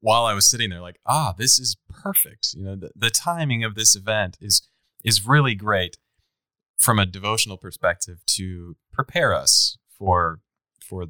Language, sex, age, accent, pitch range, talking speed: English, male, 20-39, American, 95-125 Hz, 170 wpm